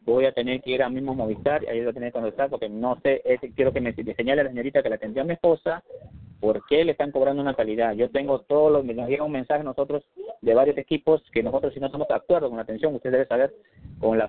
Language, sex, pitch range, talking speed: Spanish, male, 115-150 Hz, 270 wpm